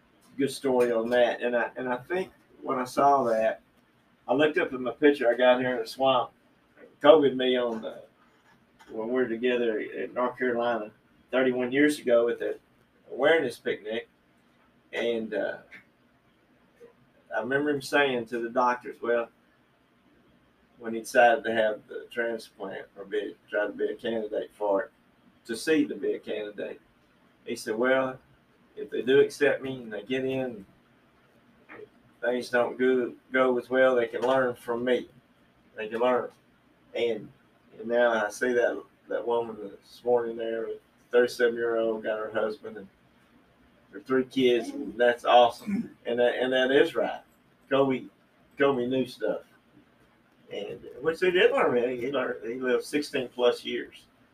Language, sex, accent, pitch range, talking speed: English, male, American, 115-135 Hz, 170 wpm